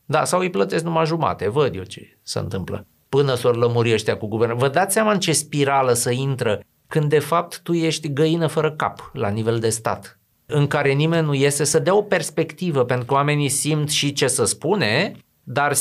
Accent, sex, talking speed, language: native, male, 210 wpm, Romanian